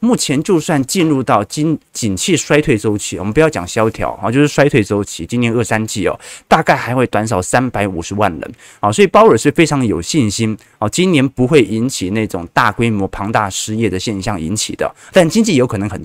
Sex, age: male, 20-39